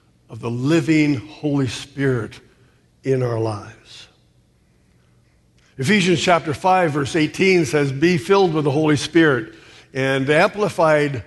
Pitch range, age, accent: 140-180 Hz, 60-79, American